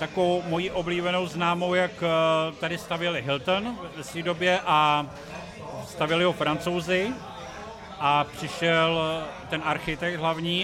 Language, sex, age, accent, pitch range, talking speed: Czech, male, 50-69, native, 155-180 Hz, 115 wpm